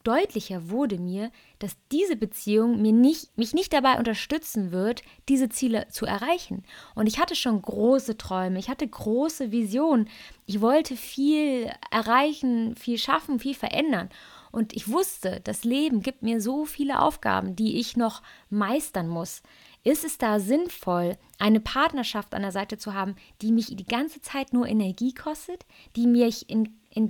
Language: German